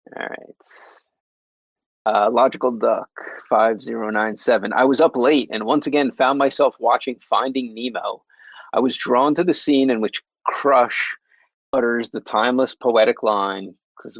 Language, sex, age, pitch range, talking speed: English, male, 30-49, 115-140 Hz, 150 wpm